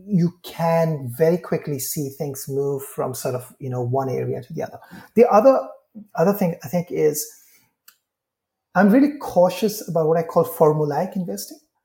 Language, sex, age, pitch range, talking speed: English, male, 30-49, 150-205 Hz, 165 wpm